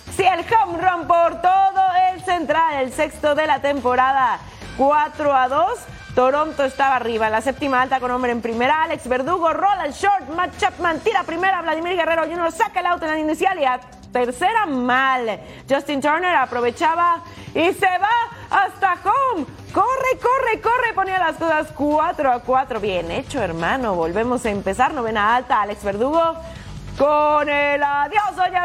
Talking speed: 170 wpm